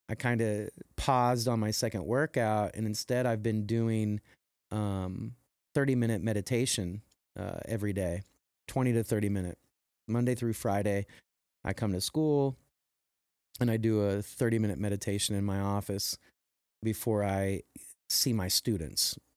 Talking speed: 135 wpm